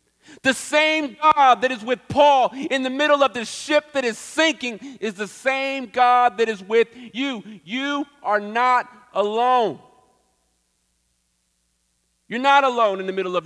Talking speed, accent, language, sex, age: 155 wpm, American, English, male, 40-59